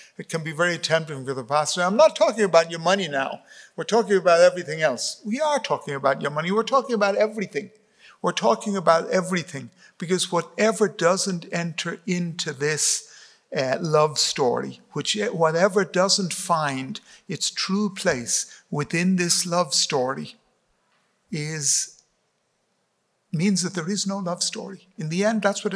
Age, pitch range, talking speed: 60-79, 150-195 Hz, 155 wpm